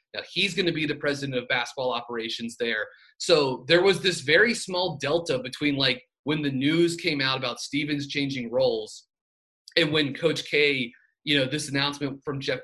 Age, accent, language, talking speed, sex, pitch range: 30-49, American, English, 185 wpm, male, 125-160 Hz